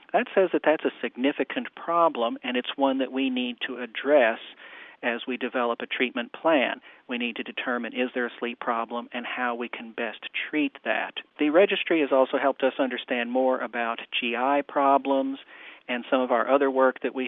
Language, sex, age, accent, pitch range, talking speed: English, male, 50-69, American, 120-140 Hz, 195 wpm